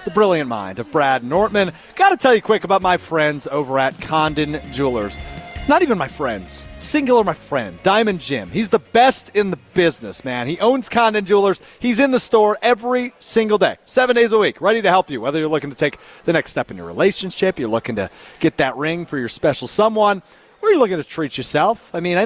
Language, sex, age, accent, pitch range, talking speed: English, male, 40-59, American, 140-210 Hz, 225 wpm